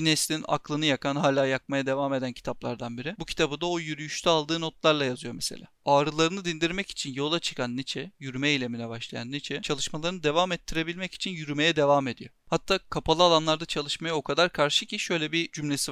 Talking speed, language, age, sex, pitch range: 175 wpm, Turkish, 40-59, male, 140-170 Hz